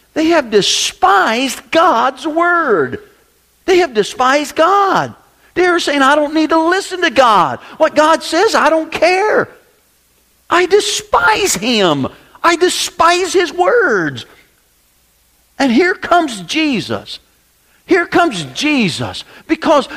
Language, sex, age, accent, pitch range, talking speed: English, male, 50-69, American, 240-340 Hz, 115 wpm